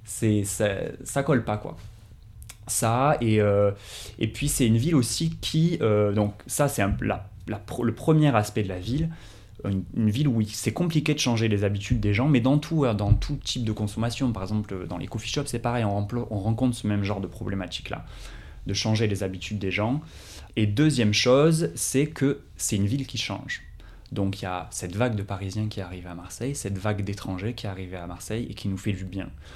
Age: 20-39